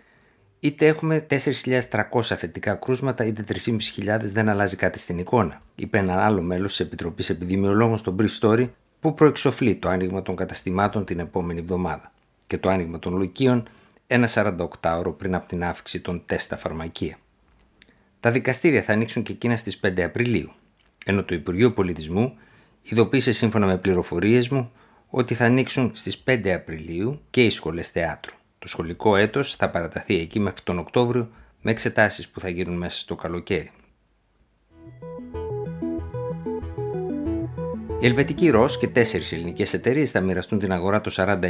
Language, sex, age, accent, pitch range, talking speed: Greek, male, 50-69, native, 90-120 Hz, 150 wpm